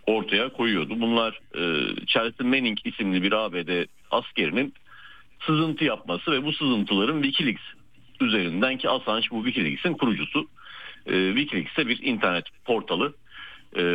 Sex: male